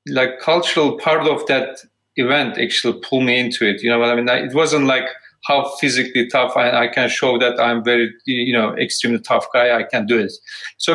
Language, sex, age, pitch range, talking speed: English, male, 40-59, 120-160 Hz, 220 wpm